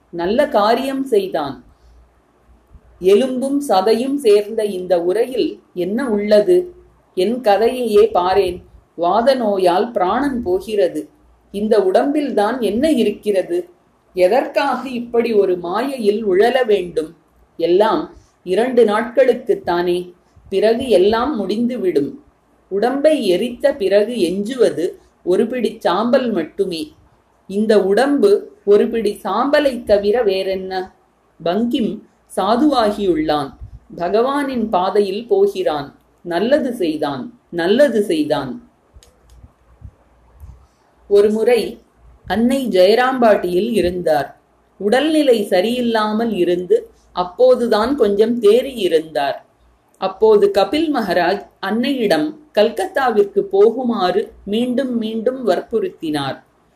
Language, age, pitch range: Tamil, 30-49, 185-260 Hz